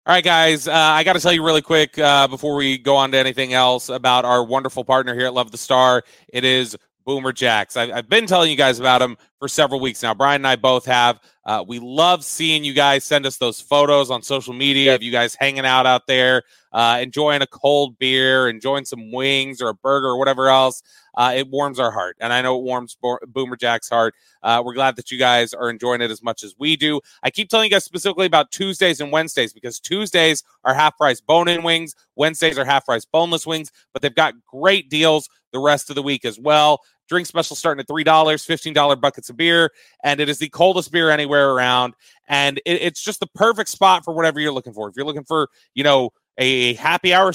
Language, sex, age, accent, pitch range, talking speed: English, male, 30-49, American, 130-160 Hz, 230 wpm